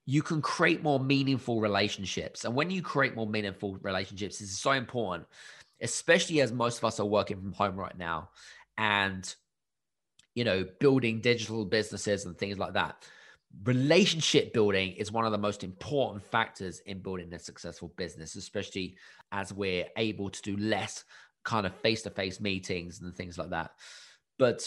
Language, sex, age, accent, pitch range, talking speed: English, male, 20-39, British, 95-125 Hz, 165 wpm